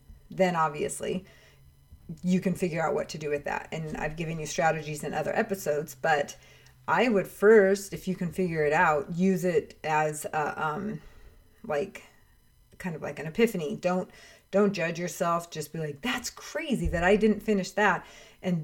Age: 30-49